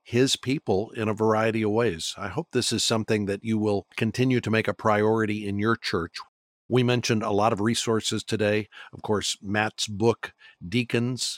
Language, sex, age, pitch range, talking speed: English, male, 50-69, 105-120 Hz, 185 wpm